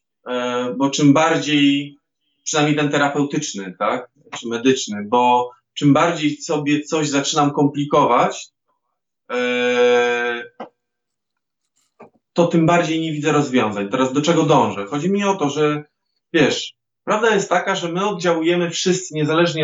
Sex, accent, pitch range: male, native, 130-170 Hz